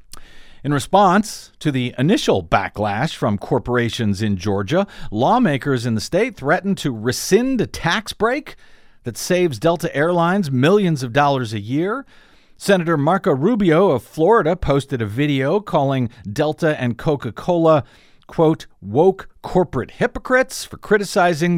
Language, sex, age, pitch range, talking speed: English, male, 50-69, 125-185 Hz, 130 wpm